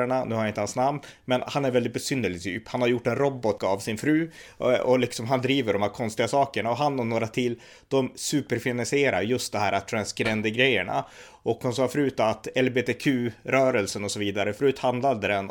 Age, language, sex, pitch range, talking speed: 30-49, Swedish, male, 105-125 Hz, 195 wpm